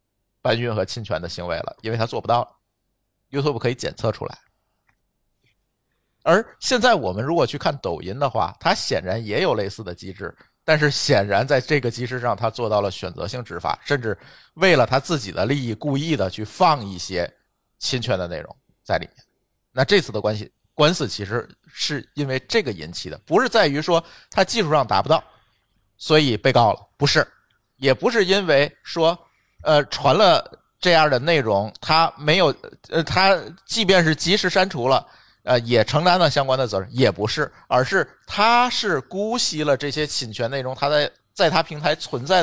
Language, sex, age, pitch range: Chinese, male, 50-69, 115-165 Hz